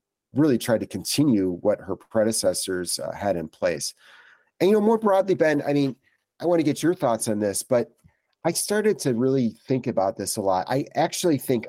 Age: 40-59